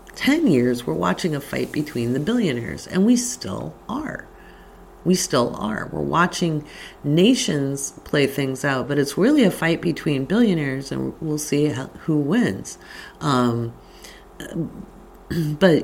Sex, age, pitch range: female, 40-59, 115-160 Hz